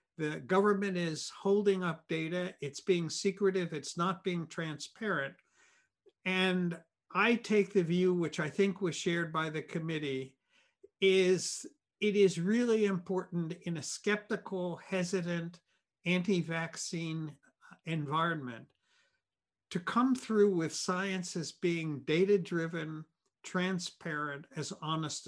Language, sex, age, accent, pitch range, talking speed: English, male, 60-79, American, 165-195 Hz, 115 wpm